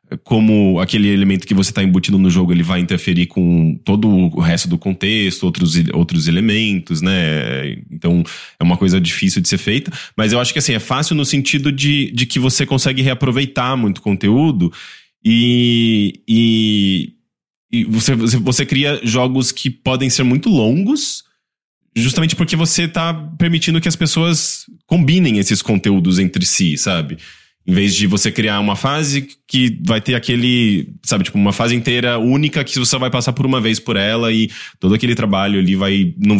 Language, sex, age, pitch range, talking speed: English, male, 20-39, 95-140 Hz, 180 wpm